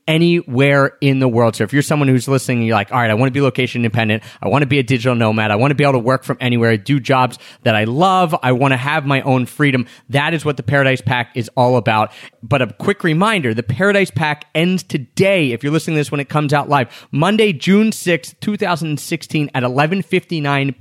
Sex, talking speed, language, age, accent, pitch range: male, 240 wpm, English, 30-49, American, 125-150 Hz